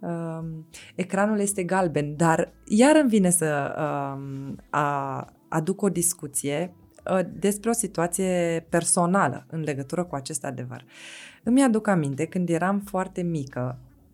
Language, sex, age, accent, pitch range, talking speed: Romanian, female, 20-39, native, 160-225 Hz, 115 wpm